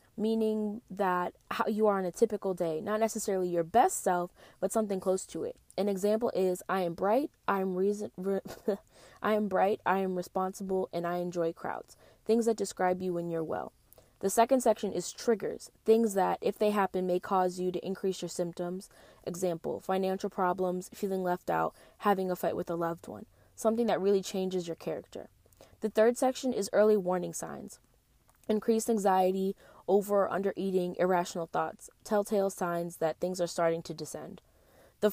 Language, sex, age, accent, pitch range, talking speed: English, female, 20-39, American, 175-205 Hz, 180 wpm